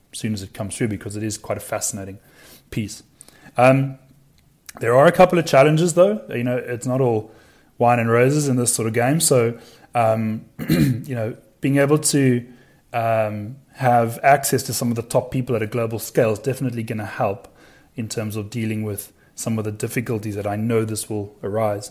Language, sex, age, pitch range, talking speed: English, male, 20-39, 110-130 Hz, 200 wpm